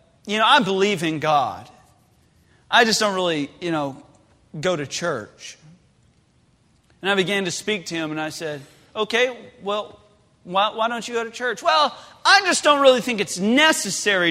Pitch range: 160-220 Hz